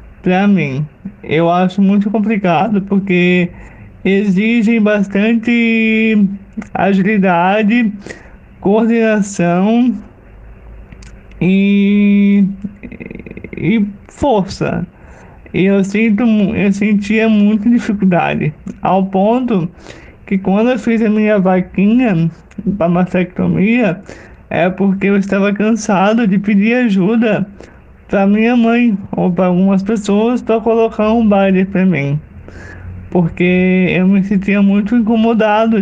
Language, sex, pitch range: Portuguese, male, 185-220 Hz